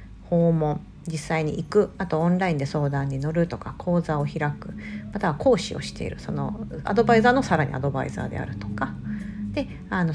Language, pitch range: Japanese, 145-220 Hz